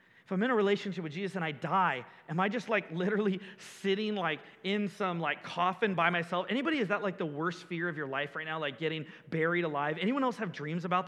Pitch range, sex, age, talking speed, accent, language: 175-225 Hz, male, 30-49, 240 wpm, American, English